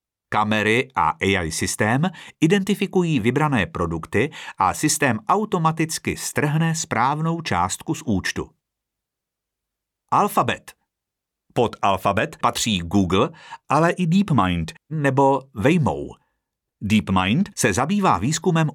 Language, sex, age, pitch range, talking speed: Czech, male, 50-69, 100-155 Hz, 95 wpm